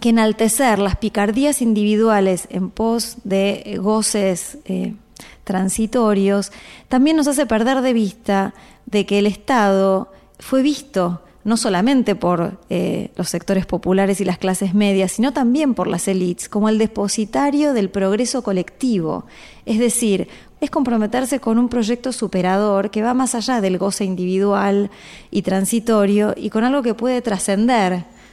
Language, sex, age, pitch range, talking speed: Spanish, female, 20-39, 195-235 Hz, 145 wpm